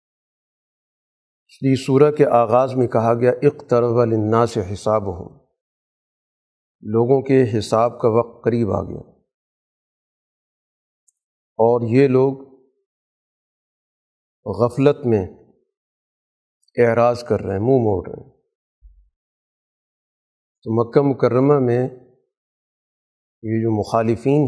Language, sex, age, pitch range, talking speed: Urdu, male, 50-69, 115-135 Hz, 100 wpm